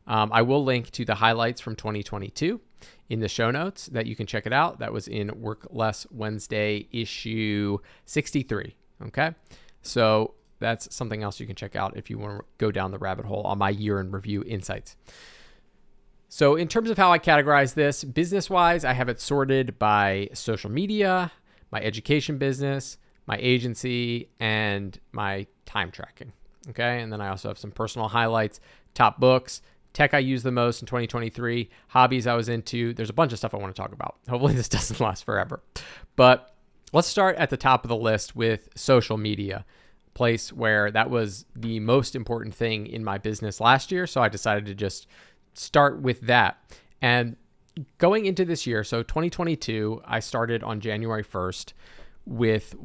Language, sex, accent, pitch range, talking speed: English, male, American, 105-130 Hz, 180 wpm